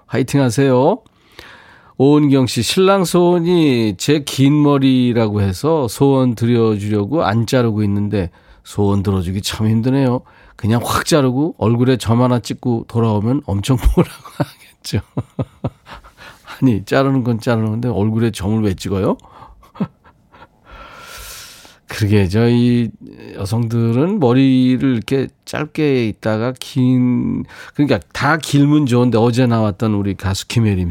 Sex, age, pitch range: male, 40-59, 105-145 Hz